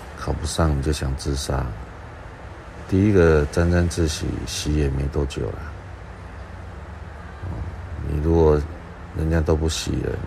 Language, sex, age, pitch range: Chinese, male, 60-79, 75-85 Hz